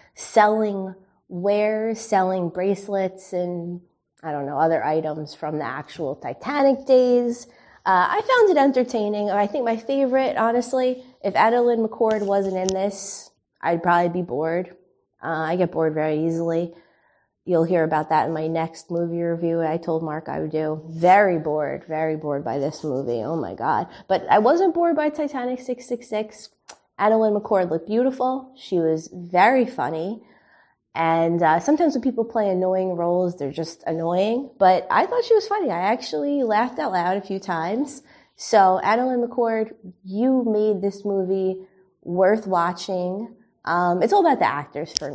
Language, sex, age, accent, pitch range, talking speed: English, female, 20-39, American, 165-225 Hz, 160 wpm